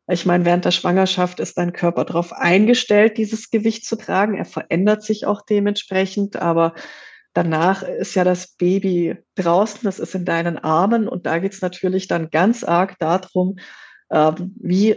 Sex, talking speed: female, 165 wpm